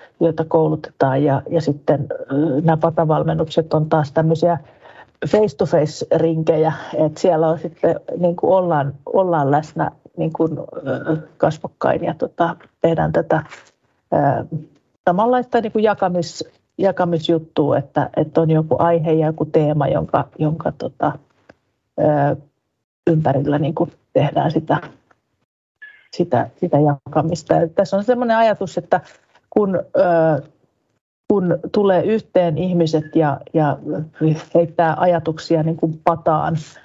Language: Finnish